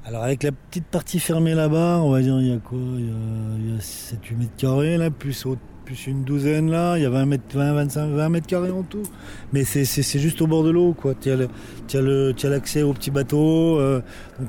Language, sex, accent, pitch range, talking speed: French, male, French, 120-140 Hz, 250 wpm